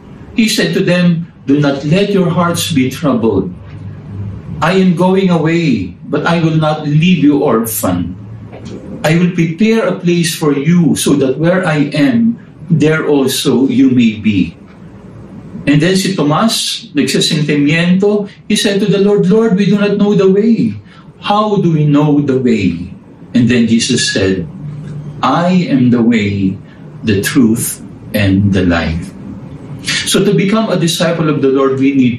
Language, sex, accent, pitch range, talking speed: English, male, Filipino, 125-180 Hz, 160 wpm